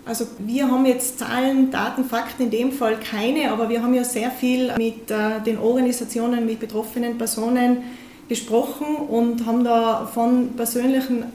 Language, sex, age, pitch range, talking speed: German, female, 20-39, 230-255 Hz, 155 wpm